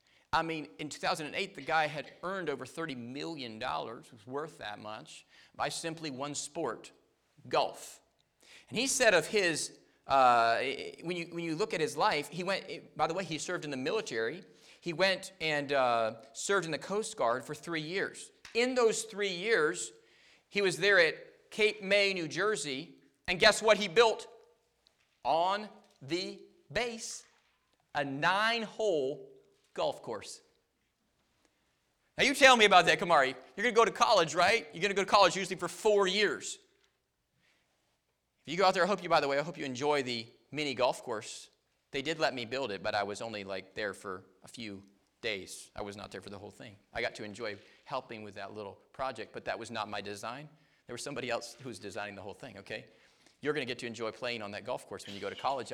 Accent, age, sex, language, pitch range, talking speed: American, 40-59, male, English, 120-200 Hz, 205 wpm